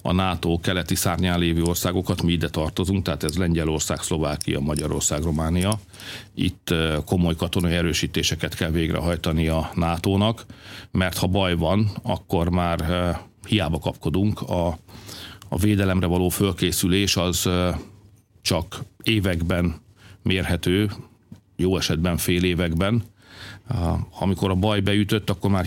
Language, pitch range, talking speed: Hungarian, 85-100 Hz, 115 wpm